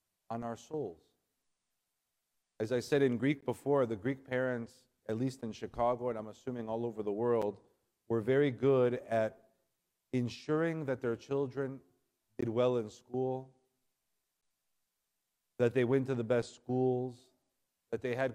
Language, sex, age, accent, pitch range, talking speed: English, male, 40-59, American, 115-135 Hz, 145 wpm